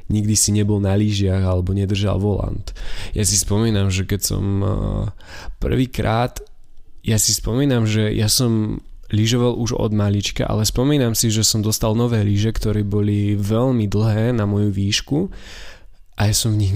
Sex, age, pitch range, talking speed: male, 20-39, 100-110 Hz, 160 wpm